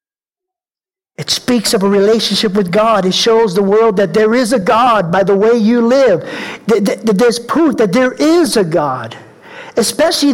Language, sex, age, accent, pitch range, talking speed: English, male, 50-69, American, 180-280 Hz, 170 wpm